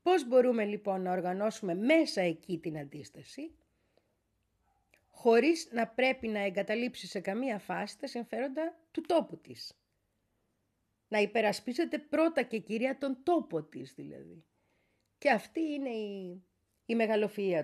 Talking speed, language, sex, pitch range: 125 wpm, Greek, female, 170-245 Hz